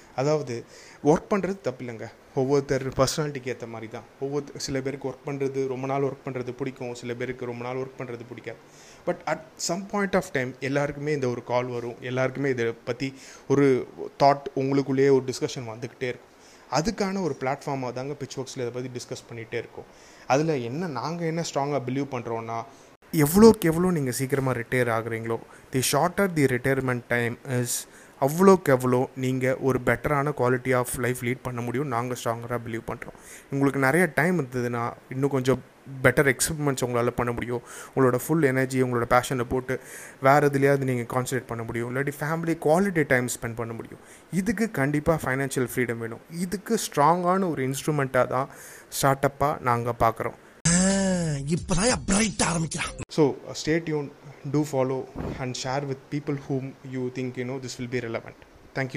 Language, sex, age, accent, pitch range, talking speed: Tamil, male, 30-49, native, 125-145 Hz, 140 wpm